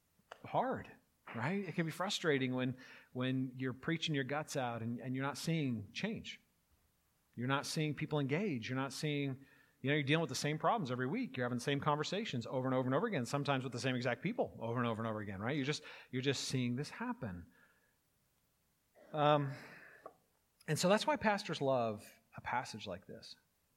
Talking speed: 200 wpm